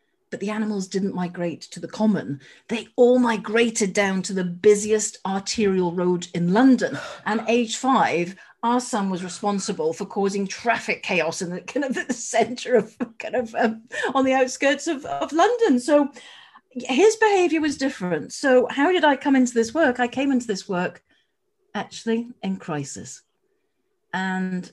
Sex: female